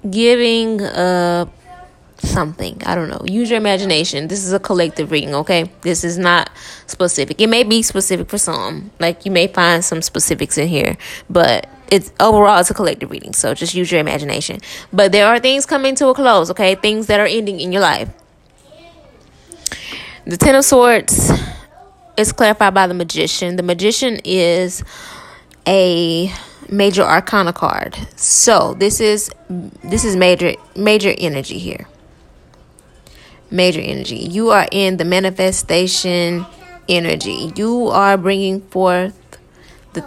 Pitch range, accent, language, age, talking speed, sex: 175-225 Hz, American, English, 10-29, 150 wpm, female